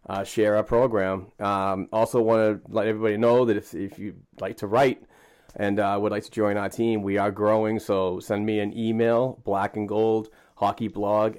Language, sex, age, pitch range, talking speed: English, male, 30-49, 95-110 Hz, 200 wpm